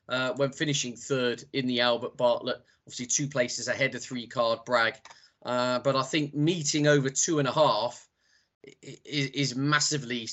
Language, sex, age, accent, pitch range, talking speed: English, male, 20-39, British, 120-145 Hz, 165 wpm